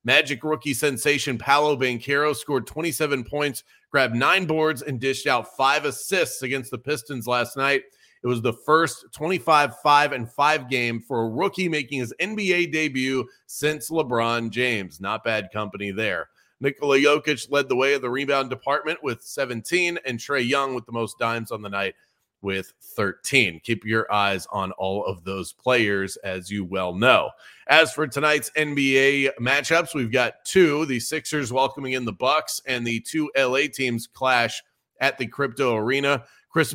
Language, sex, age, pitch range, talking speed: English, male, 30-49, 115-150 Hz, 165 wpm